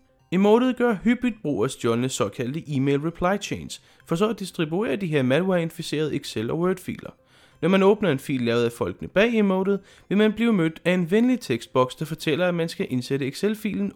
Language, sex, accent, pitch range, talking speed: Danish, male, native, 130-200 Hz, 190 wpm